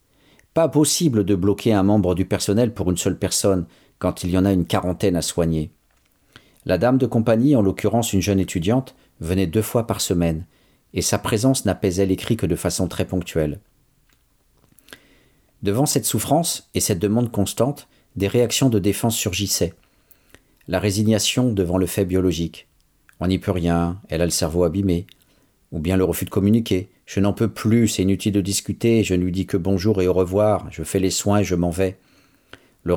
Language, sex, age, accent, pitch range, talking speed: French, male, 50-69, French, 90-115 Hz, 190 wpm